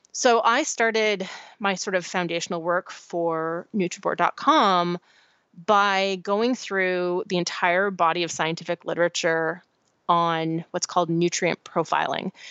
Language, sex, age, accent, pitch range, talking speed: English, female, 30-49, American, 170-200 Hz, 115 wpm